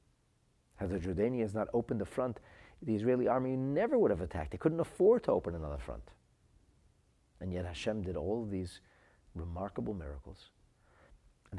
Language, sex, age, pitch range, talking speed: English, male, 50-69, 85-105 Hz, 160 wpm